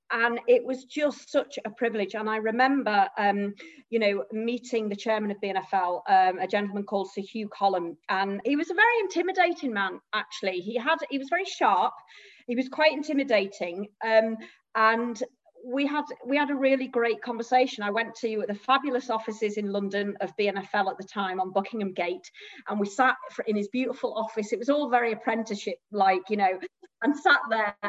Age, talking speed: 40-59, 185 wpm